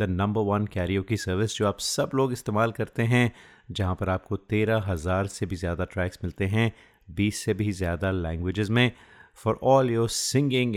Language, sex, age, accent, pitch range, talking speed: English, male, 30-49, Indian, 95-115 Hz, 175 wpm